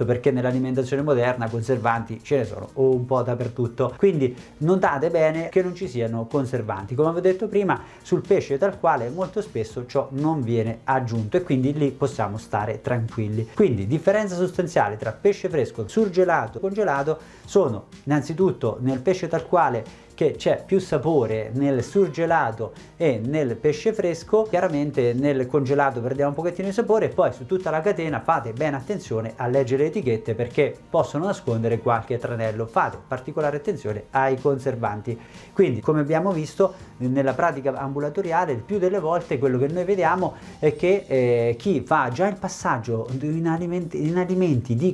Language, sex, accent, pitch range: Italian, male, native, 120-170 Hz